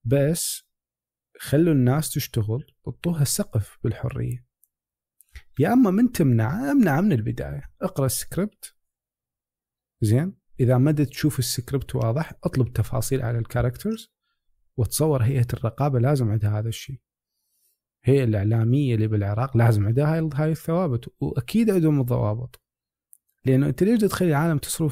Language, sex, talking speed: Arabic, male, 120 wpm